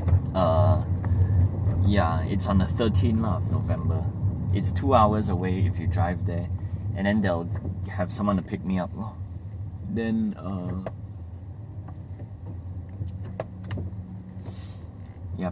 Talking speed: 115 wpm